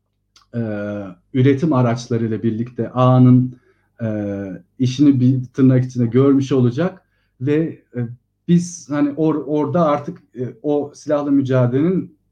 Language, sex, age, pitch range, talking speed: Turkish, male, 40-59, 110-140 Hz, 110 wpm